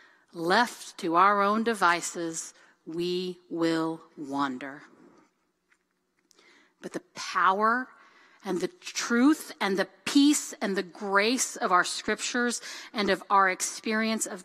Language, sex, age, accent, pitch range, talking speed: English, female, 40-59, American, 190-250 Hz, 115 wpm